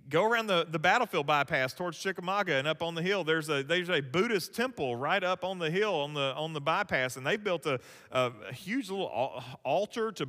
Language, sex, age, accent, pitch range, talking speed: English, male, 40-59, American, 160-245 Hz, 225 wpm